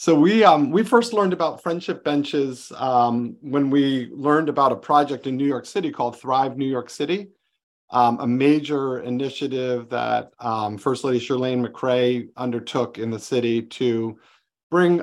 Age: 40-59